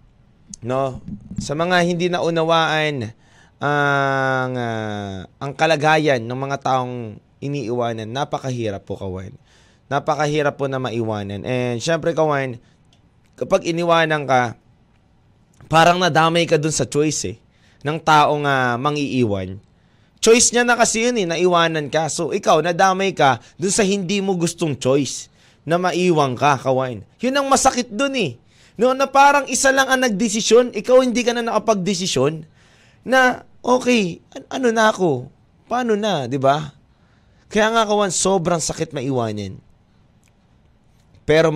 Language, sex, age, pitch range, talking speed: Filipino, male, 20-39, 120-190 Hz, 135 wpm